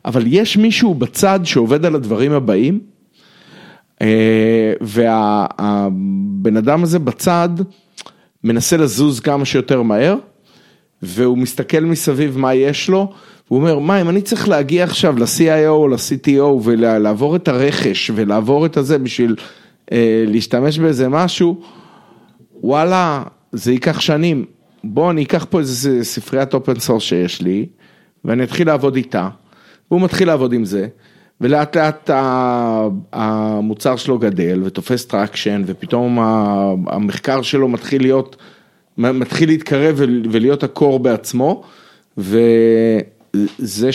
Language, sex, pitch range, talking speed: Hebrew, male, 110-150 Hz, 115 wpm